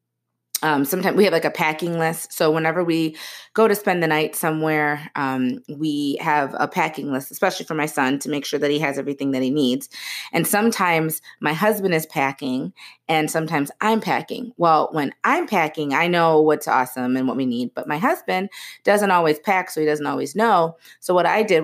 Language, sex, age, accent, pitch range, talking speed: English, female, 30-49, American, 140-175 Hz, 205 wpm